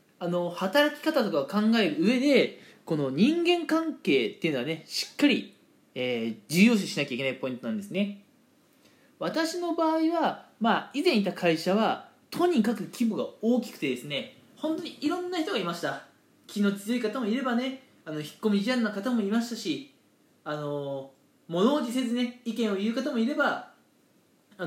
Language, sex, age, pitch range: Japanese, male, 20-39, 185-280 Hz